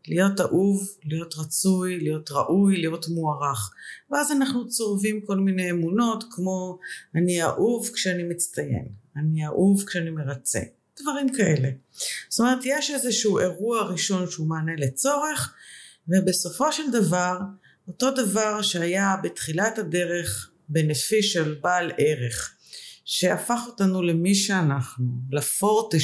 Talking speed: 115 wpm